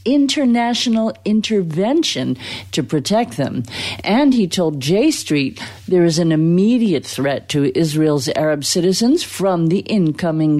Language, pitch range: English, 140-200 Hz